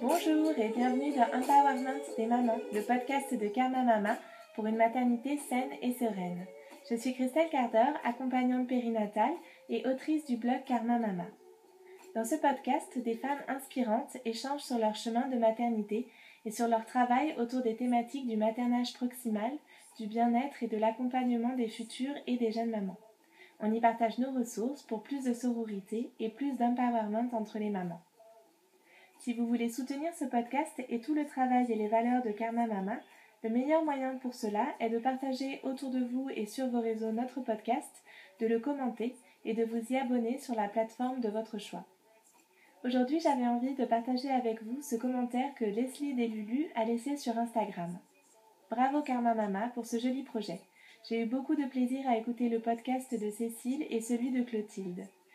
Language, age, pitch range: French, 20-39, 225-260 Hz